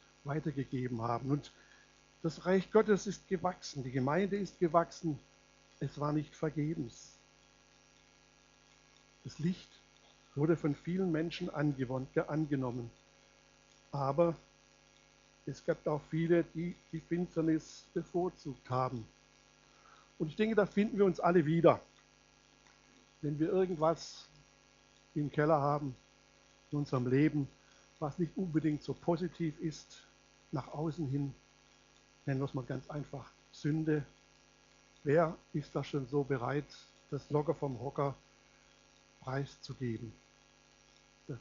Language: German